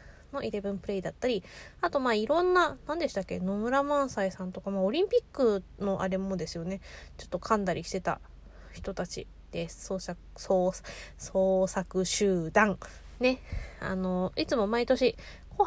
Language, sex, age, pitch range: Japanese, female, 20-39, 185-270 Hz